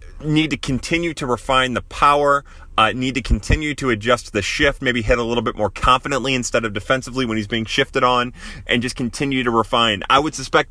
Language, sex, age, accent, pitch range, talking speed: English, male, 30-49, American, 105-140 Hz, 215 wpm